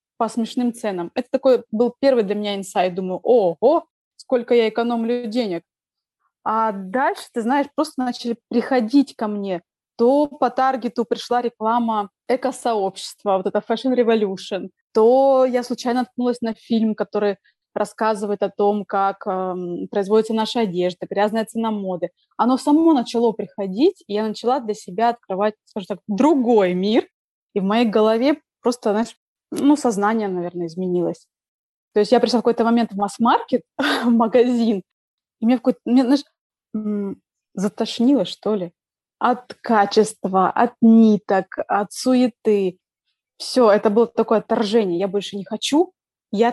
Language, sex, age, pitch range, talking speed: Russian, female, 20-39, 205-245 Hz, 145 wpm